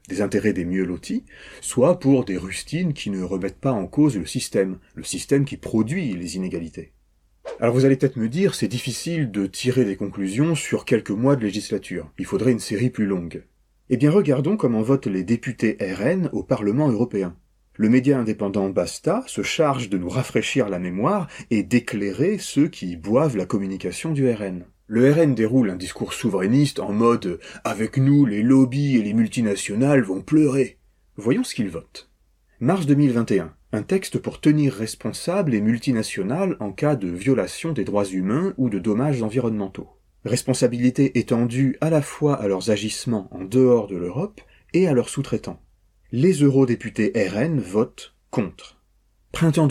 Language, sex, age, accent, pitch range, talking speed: French, male, 30-49, French, 100-140 Hz, 170 wpm